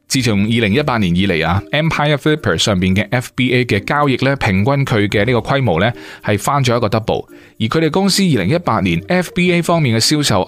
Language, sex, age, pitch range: Chinese, male, 20-39, 100-145 Hz